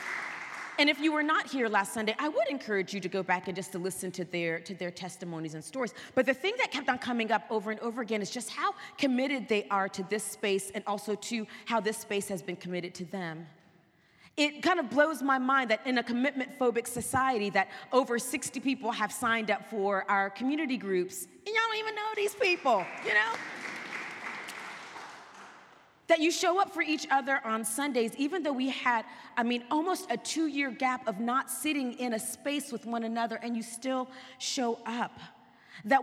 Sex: female